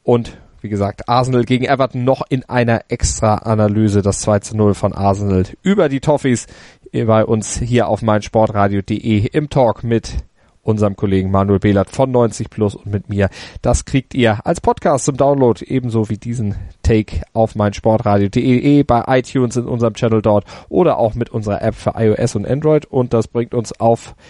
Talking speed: 170 wpm